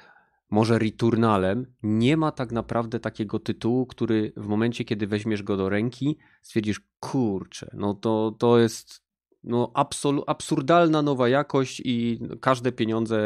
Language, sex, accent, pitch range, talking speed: Polish, male, native, 95-115 Hz, 135 wpm